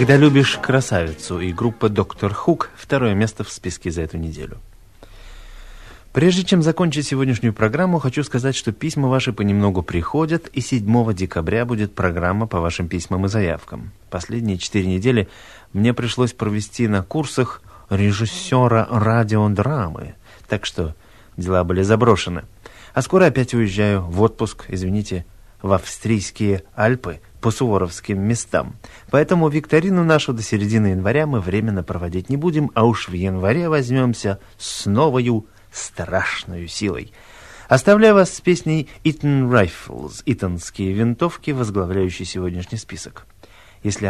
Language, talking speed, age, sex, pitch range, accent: Russian, 130 wpm, 30-49, male, 95-130 Hz, native